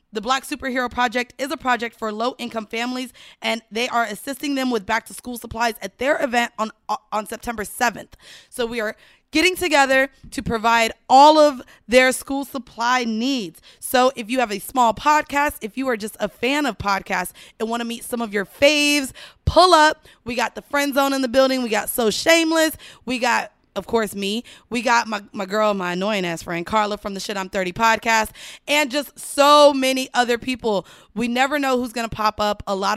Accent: American